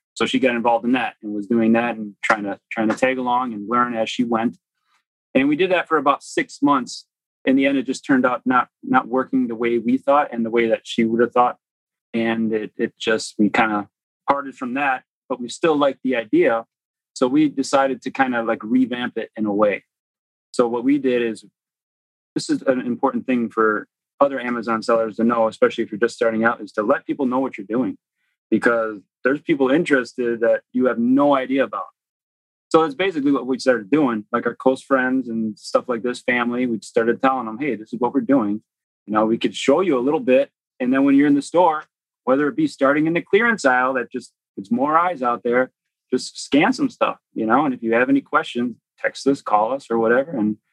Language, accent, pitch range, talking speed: English, American, 115-140 Hz, 230 wpm